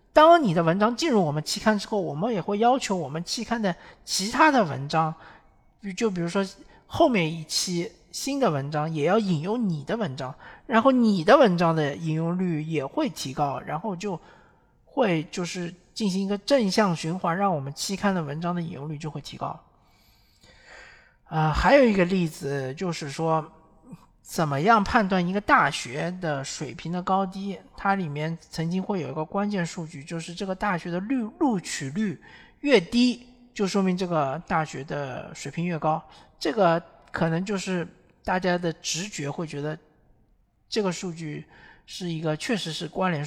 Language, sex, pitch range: Chinese, male, 160-205 Hz